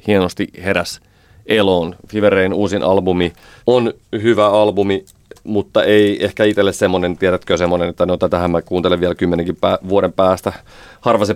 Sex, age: male, 30-49